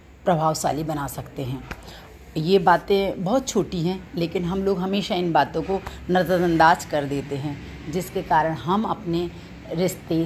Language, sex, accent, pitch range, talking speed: Hindi, female, native, 150-190 Hz, 145 wpm